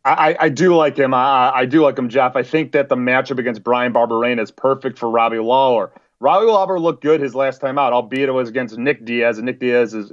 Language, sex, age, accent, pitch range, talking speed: English, male, 30-49, American, 130-165 Hz, 250 wpm